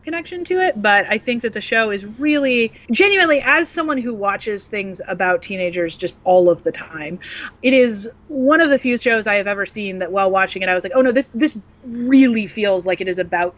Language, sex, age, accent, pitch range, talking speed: English, female, 30-49, American, 190-270 Hz, 230 wpm